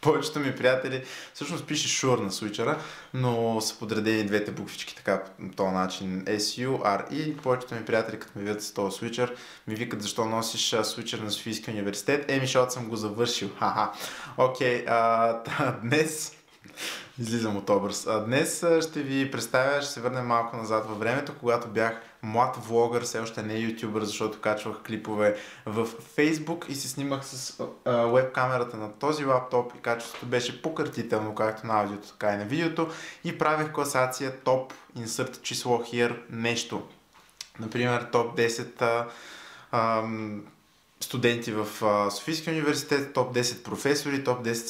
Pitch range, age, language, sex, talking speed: 110-135 Hz, 20-39, Bulgarian, male, 155 wpm